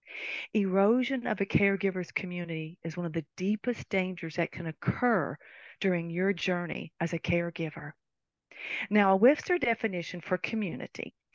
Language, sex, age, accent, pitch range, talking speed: English, female, 50-69, American, 170-215 Hz, 135 wpm